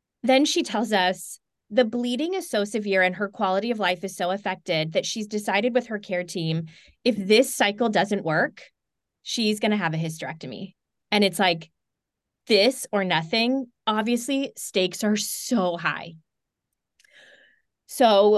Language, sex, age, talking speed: English, female, 20-39, 155 wpm